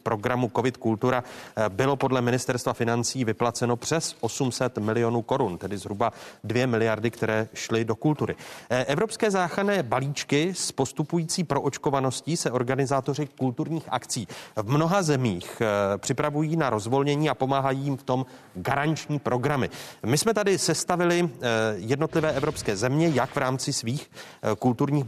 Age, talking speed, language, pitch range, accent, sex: 30-49, 130 wpm, Czech, 115-150 Hz, native, male